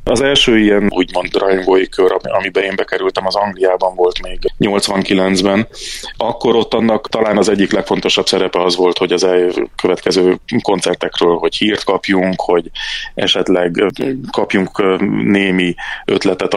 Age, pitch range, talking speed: 30-49, 90-100 Hz, 135 wpm